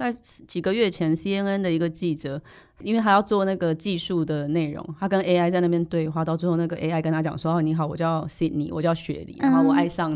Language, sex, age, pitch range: Chinese, female, 20-39, 155-180 Hz